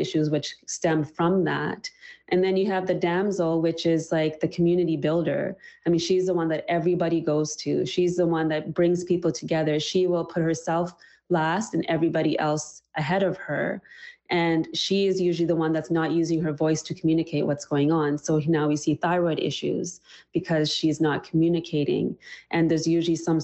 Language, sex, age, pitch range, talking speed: English, female, 20-39, 155-175 Hz, 190 wpm